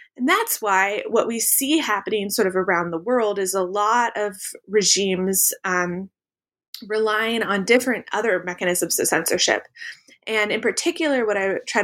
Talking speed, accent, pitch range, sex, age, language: 155 wpm, American, 185-255 Hz, female, 20-39, English